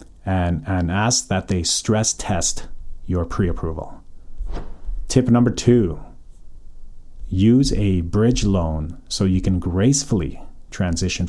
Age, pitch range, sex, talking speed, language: 30-49, 90-120 Hz, male, 110 wpm, English